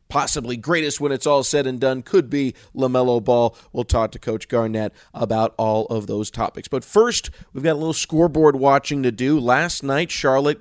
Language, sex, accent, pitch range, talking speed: English, male, American, 115-140 Hz, 200 wpm